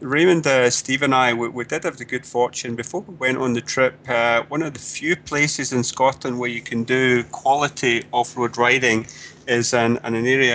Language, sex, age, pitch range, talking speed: English, male, 30-49, 115-130 Hz, 215 wpm